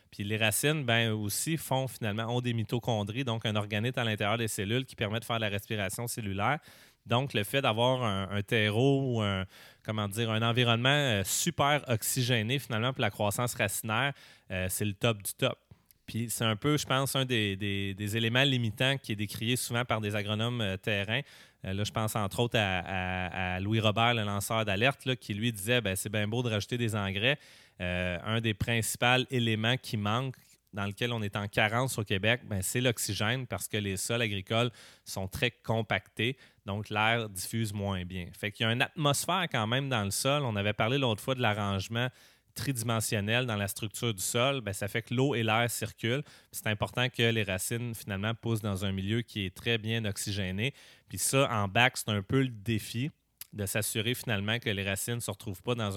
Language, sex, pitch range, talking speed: French, male, 105-125 Hz, 210 wpm